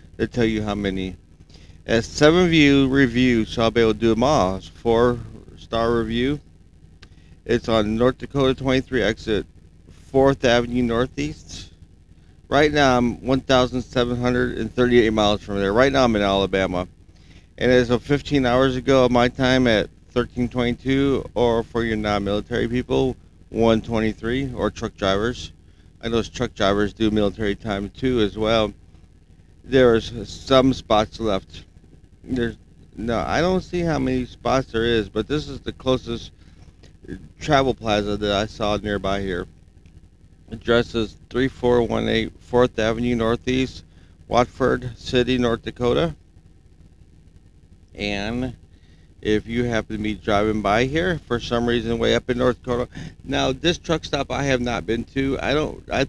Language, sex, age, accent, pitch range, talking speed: English, male, 40-59, American, 90-125 Hz, 150 wpm